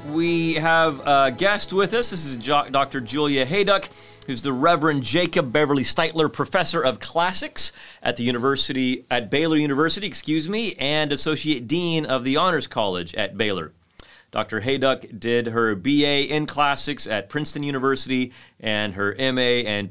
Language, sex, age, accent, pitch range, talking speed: English, male, 30-49, American, 120-160 Hz, 155 wpm